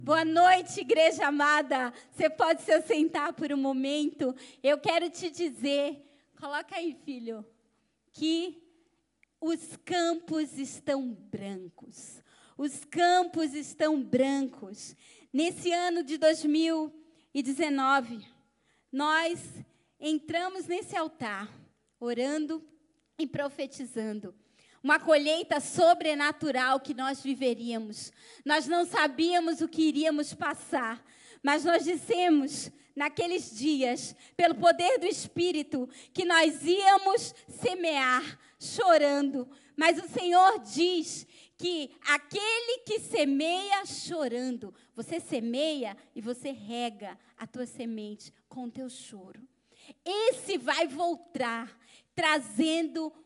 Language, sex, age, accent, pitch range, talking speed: Portuguese, female, 20-39, Brazilian, 265-335 Hz, 100 wpm